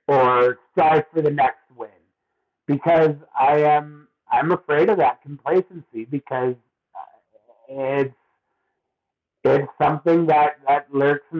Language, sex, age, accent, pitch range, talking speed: English, male, 50-69, American, 135-160 Hz, 115 wpm